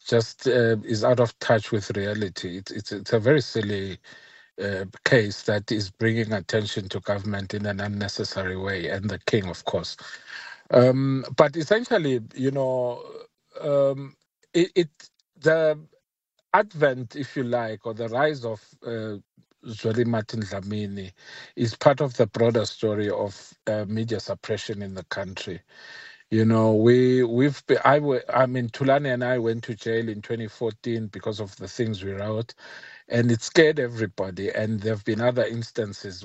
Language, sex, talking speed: English, male, 160 wpm